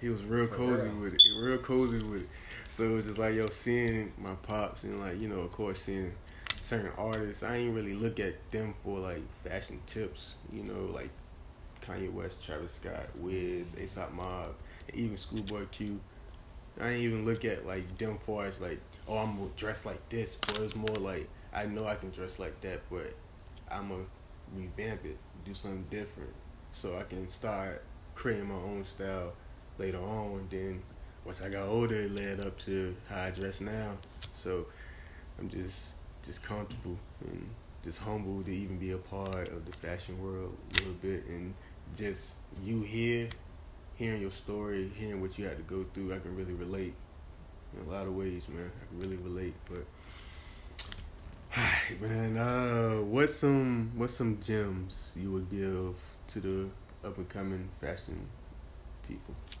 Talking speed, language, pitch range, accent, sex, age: 175 wpm, English, 90-105 Hz, American, male, 20-39